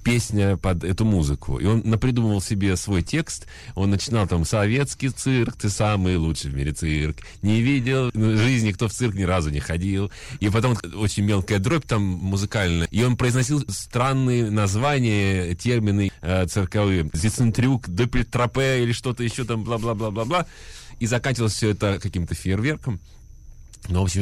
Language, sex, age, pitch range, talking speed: Russian, male, 30-49, 90-115 Hz, 155 wpm